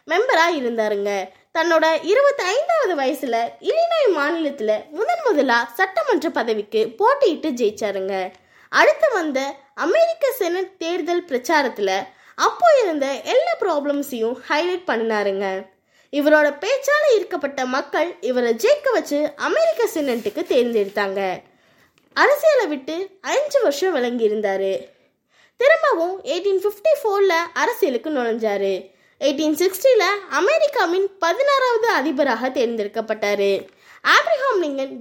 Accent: native